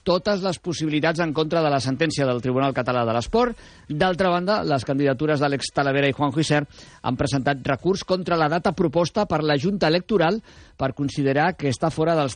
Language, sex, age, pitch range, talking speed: Spanish, male, 50-69, 130-160 Hz, 190 wpm